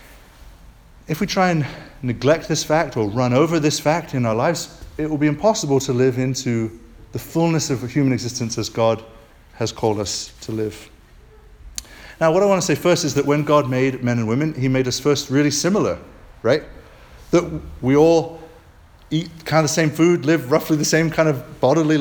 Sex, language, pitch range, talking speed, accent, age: male, English, 120-160 Hz, 200 wpm, British, 30-49